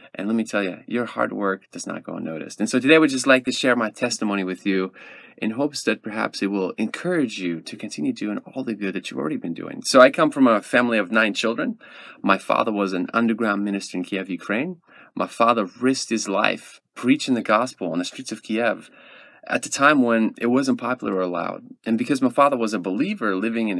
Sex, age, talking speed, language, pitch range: male, 30-49, 235 wpm, English, 105-130 Hz